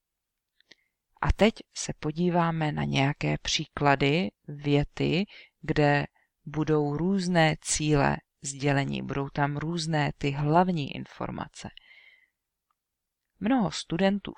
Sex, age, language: female, 40-59, English